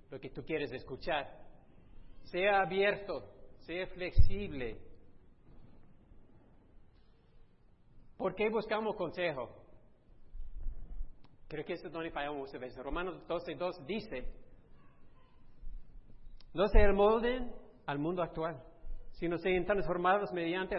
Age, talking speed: 50-69, 100 wpm